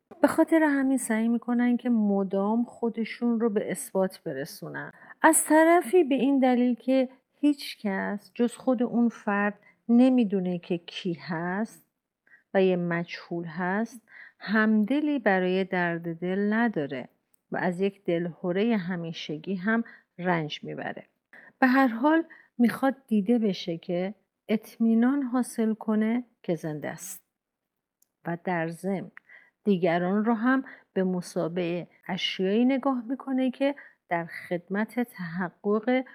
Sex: female